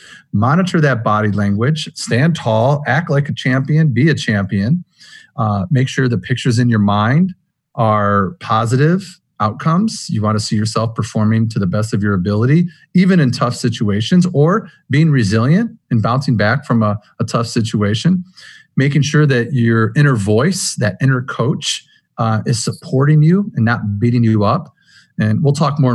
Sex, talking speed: male, 170 wpm